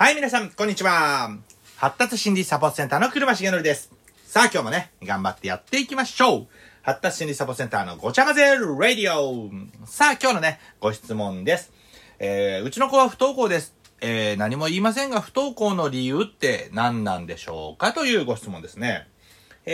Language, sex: Japanese, male